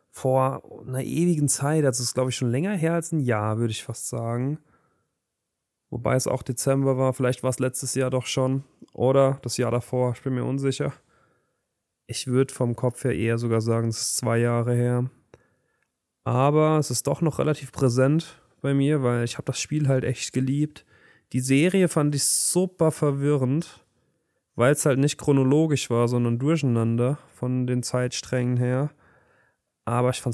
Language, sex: German, male